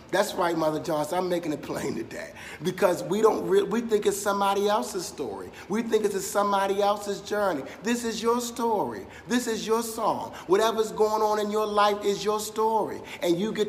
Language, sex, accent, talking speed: English, male, American, 200 wpm